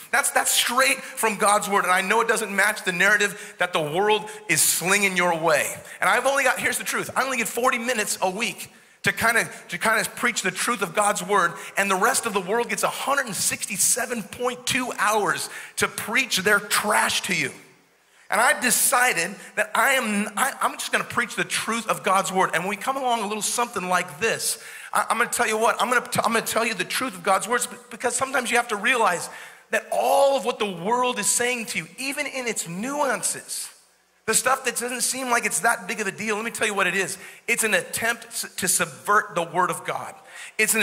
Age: 40-59